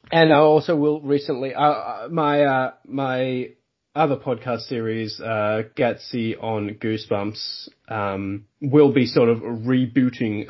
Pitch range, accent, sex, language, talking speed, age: 120-165 Hz, Australian, male, English, 125 wpm, 20-39